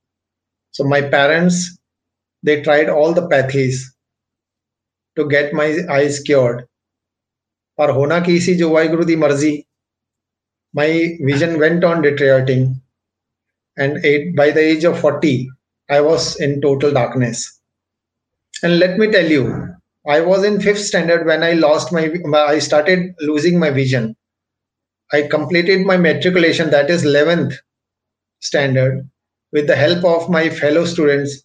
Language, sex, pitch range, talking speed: Punjabi, male, 130-170 Hz, 135 wpm